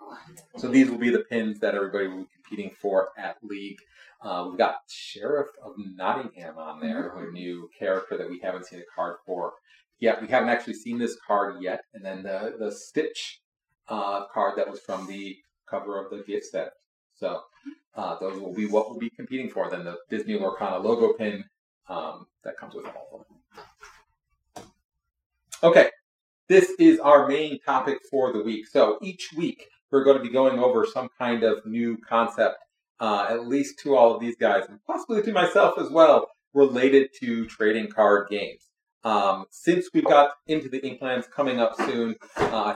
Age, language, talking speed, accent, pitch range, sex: 30-49, English, 185 wpm, American, 105-145 Hz, male